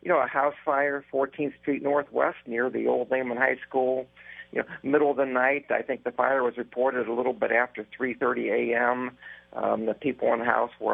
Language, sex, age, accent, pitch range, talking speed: English, male, 50-69, American, 115-135 Hz, 210 wpm